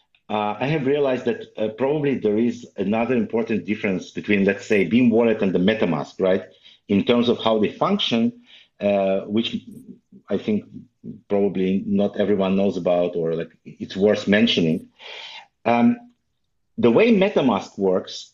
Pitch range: 95-130 Hz